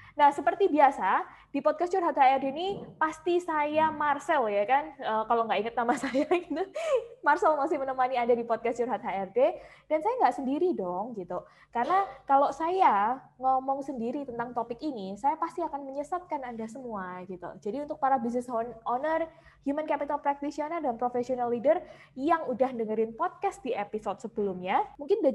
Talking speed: 165 wpm